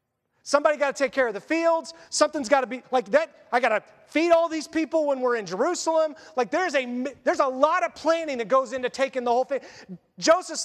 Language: English